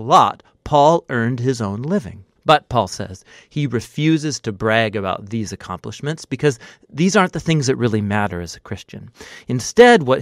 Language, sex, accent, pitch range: English, male, American, 105-150 Hz